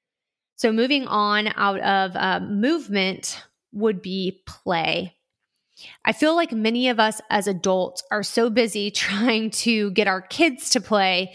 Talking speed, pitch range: 150 wpm, 190-230 Hz